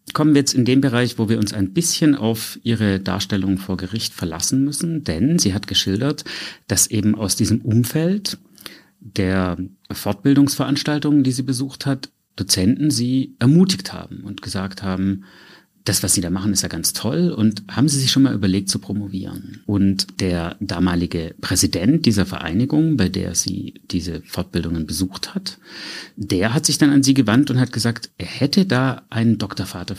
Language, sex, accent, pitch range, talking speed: German, male, German, 95-125 Hz, 170 wpm